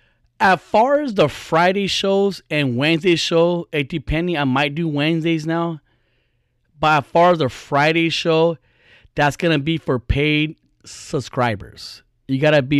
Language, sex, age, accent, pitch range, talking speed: English, male, 30-49, American, 120-150 Hz, 160 wpm